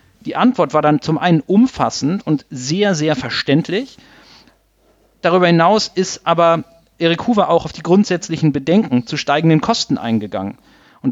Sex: male